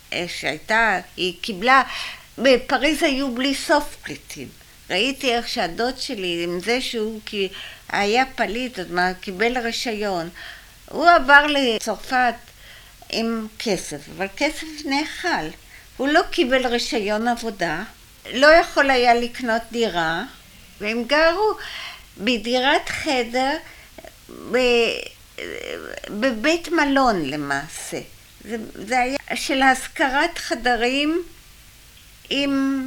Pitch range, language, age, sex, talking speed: 220-290 Hz, Hebrew, 50-69, female, 100 wpm